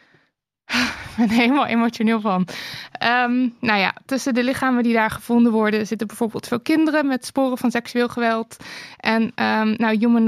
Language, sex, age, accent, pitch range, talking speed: Dutch, female, 20-39, Dutch, 210-245 Hz, 170 wpm